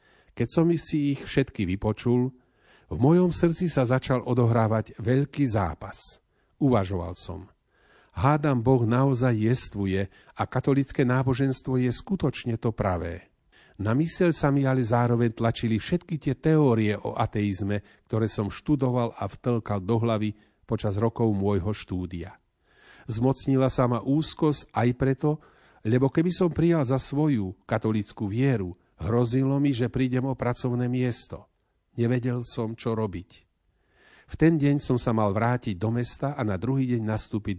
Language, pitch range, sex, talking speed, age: Slovak, 105-135 Hz, male, 140 wpm, 40-59